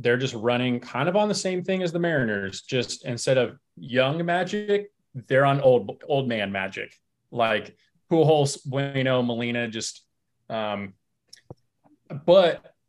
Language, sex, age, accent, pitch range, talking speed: English, male, 20-39, American, 115-160 Hz, 140 wpm